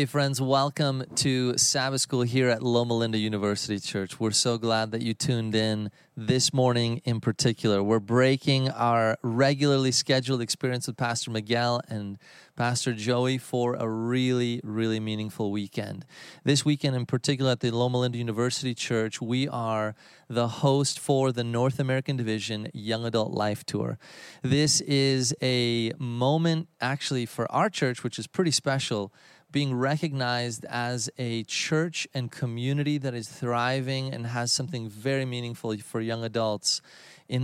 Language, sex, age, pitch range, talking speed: English, male, 30-49, 115-135 Hz, 150 wpm